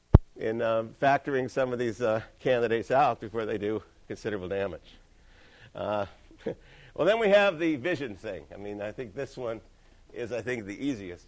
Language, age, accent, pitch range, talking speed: English, 60-79, American, 110-140 Hz, 175 wpm